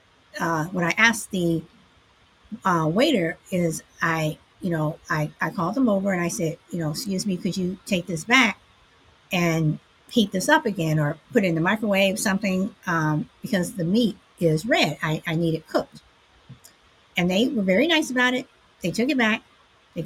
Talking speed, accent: 190 wpm, American